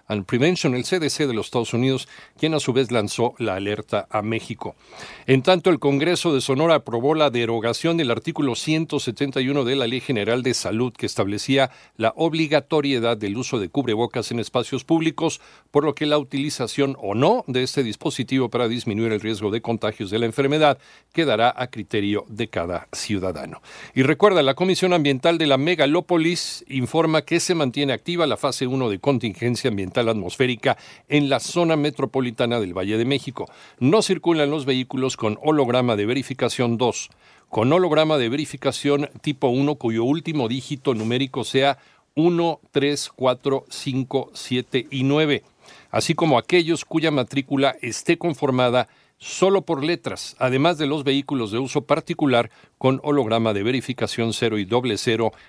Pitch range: 120-150 Hz